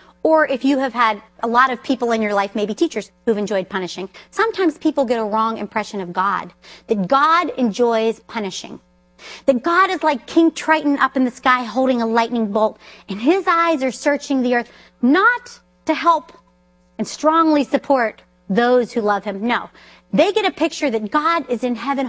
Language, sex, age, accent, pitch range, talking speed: English, female, 40-59, American, 215-340 Hz, 190 wpm